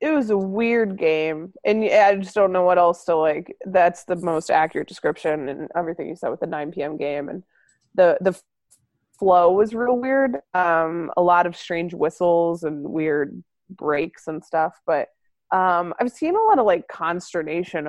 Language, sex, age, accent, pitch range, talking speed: English, female, 20-39, American, 160-205 Hz, 190 wpm